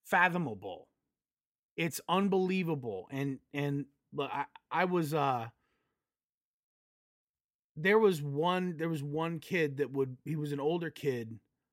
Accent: American